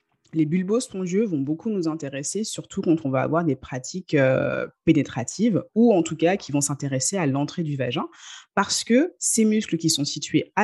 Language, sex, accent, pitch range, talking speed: French, female, French, 145-195 Hz, 195 wpm